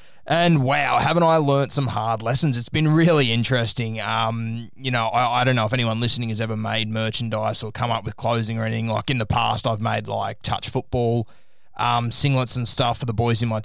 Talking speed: 225 wpm